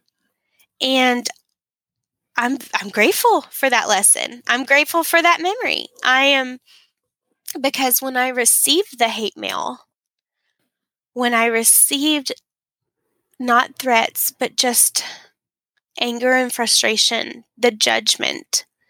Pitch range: 220-265 Hz